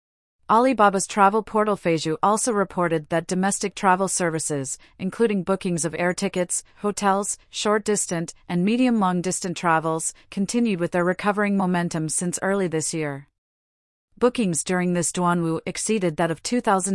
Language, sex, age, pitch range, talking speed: English, female, 40-59, 170-210 Hz, 125 wpm